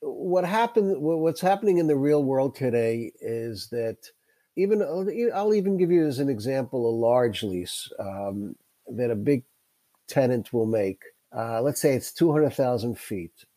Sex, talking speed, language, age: male, 155 wpm, English, 50-69